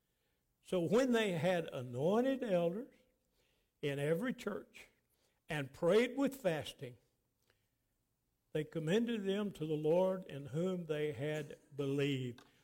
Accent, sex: American, male